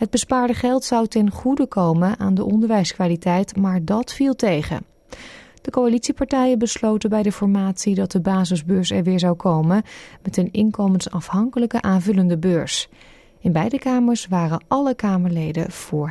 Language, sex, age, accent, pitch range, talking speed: Dutch, female, 30-49, Dutch, 180-225 Hz, 145 wpm